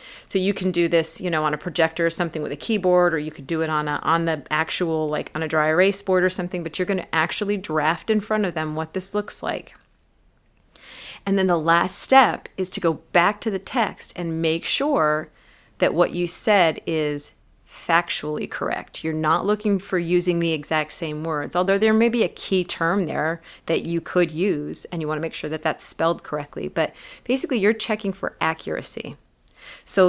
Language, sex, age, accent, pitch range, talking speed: English, female, 30-49, American, 160-195 Hz, 215 wpm